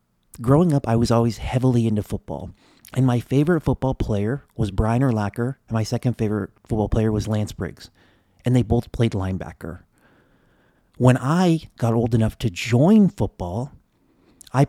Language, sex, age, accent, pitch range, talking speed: English, male, 40-59, American, 110-140 Hz, 160 wpm